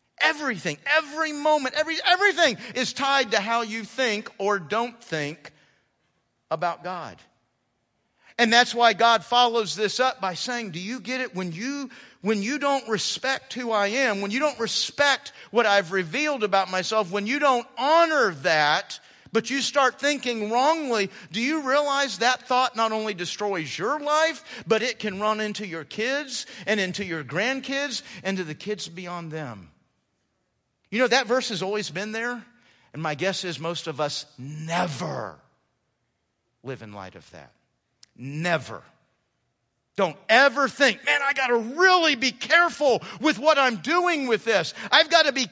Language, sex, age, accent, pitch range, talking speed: English, male, 50-69, American, 185-270 Hz, 165 wpm